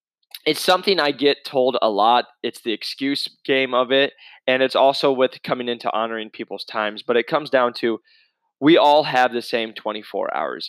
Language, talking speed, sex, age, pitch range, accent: English, 190 wpm, male, 20-39, 115-150 Hz, American